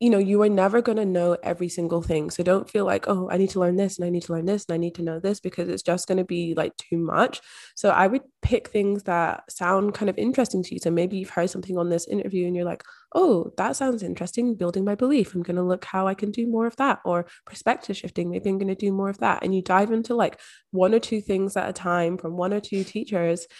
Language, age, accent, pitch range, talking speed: English, 20-39, British, 175-210 Hz, 280 wpm